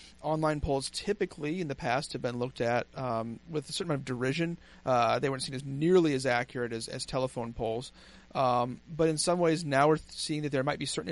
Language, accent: English, American